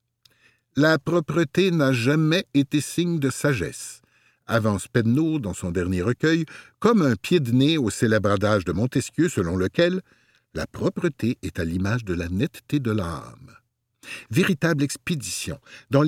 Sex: male